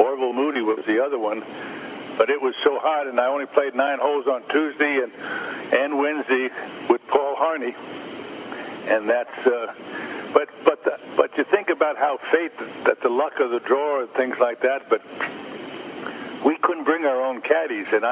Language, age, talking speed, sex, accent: English, 60-79, 180 wpm, male, American